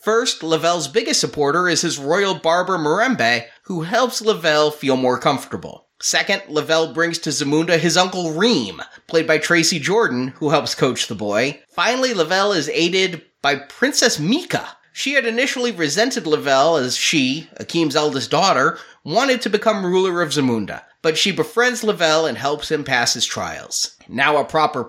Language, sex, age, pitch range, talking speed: English, male, 30-49, 145-200 Hz, 165 wpm